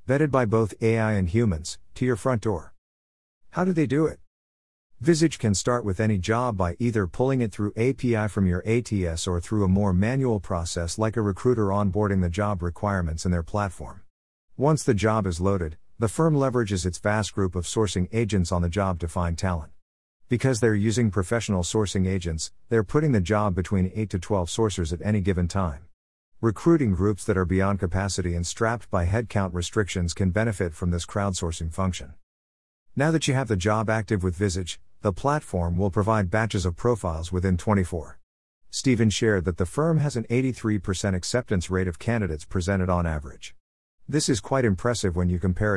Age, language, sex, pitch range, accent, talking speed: 50-69, English, male, 90-110 Hz, American, 185 wpm